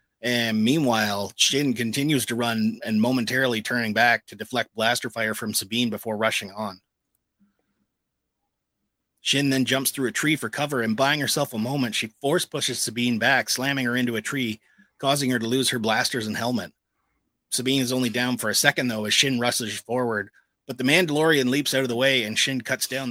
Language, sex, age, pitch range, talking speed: English, male, 30-49, 110-130 Hz, 190 wpm